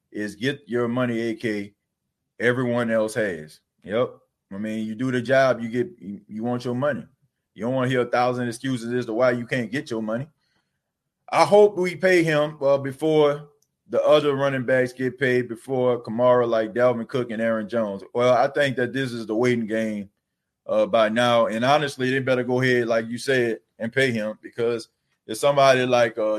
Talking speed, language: 200 wpm, English